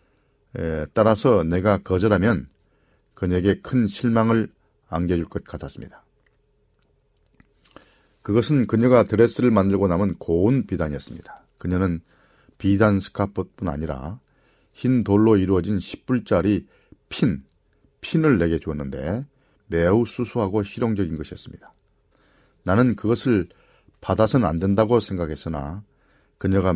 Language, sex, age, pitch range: Korean, male, 40-59, 85-115 Hz